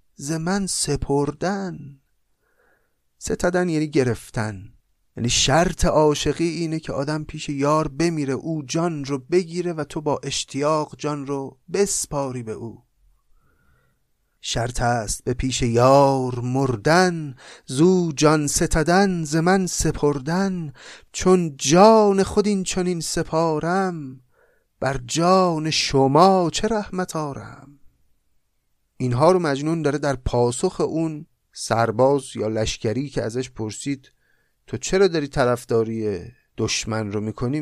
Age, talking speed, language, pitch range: 30-49, 110 wpm, Persian, 120-165 Hz